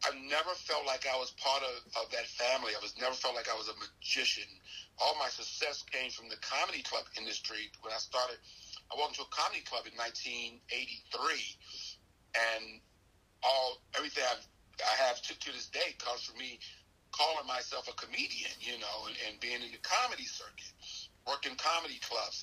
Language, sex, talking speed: English, male, 185 wpm